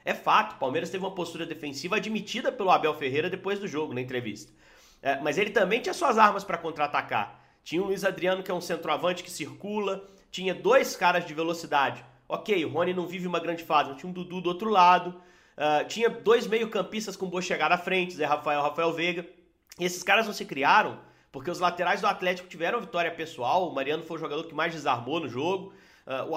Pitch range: 160-195 Hz